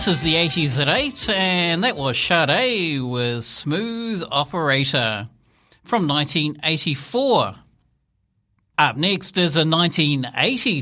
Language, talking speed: English, 110 wpm